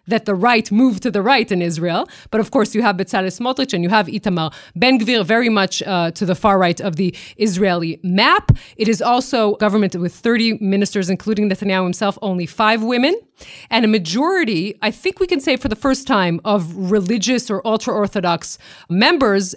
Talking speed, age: 195 wpm, 30-49